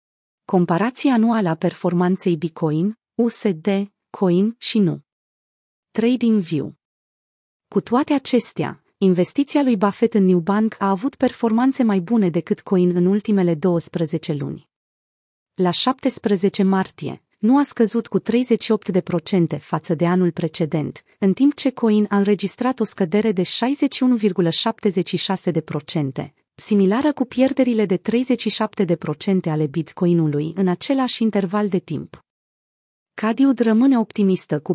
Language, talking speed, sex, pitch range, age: Romanian, 120 wpm, female, 180-225 Hz, 30-49